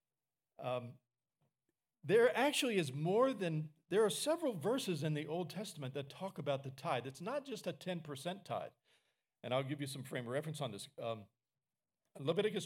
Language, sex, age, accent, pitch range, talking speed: English, male, 40-59, American, 140-180 Hz, 180 wpm